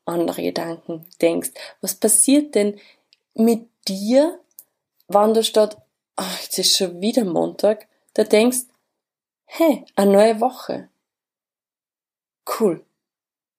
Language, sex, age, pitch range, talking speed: German, female, 20-39, 185-235 Hz, 110 wpm